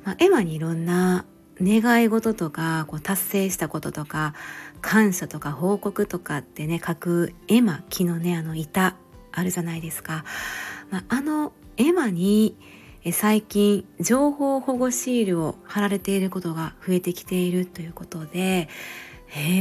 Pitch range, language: 170-225 Hz, Japanese